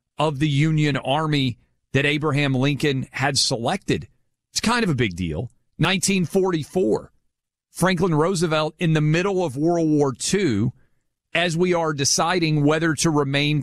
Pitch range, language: 120-165 Hz, English